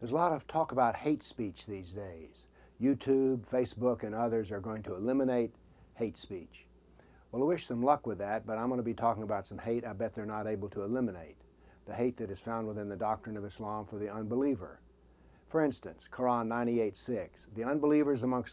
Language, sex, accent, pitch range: English, male, American, 110-130 Hz